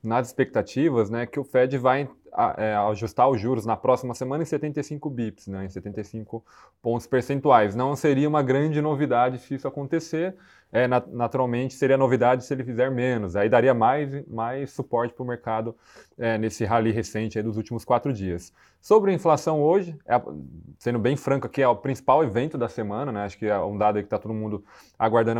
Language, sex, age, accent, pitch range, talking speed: Portuguese, male, 20-39, Brazilian, 115-140 Hz, 200 wpm